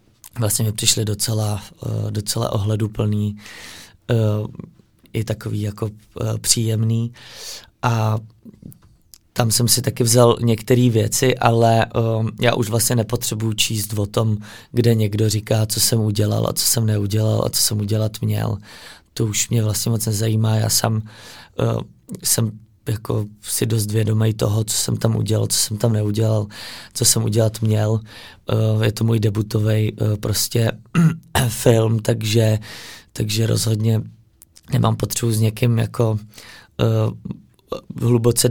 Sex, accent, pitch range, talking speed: male, native, 110-115 Hz, 135 wpm